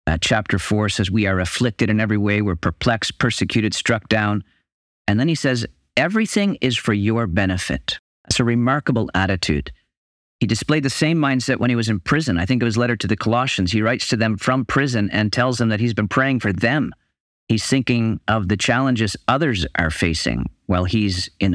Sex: male